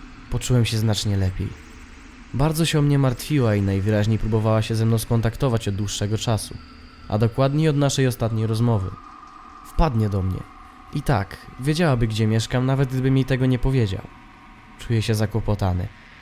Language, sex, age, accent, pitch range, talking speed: Polish, male, 20-39, native, 105-130 Hz, 155 wpm